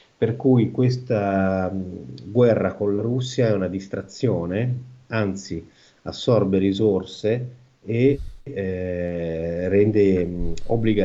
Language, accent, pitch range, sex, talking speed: Italian, native, 90-115 Hz, male, 80 wpm